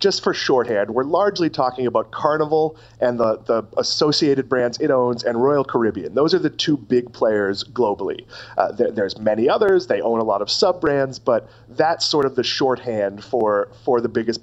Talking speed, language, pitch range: 185 wpm, English, 115-175 Hz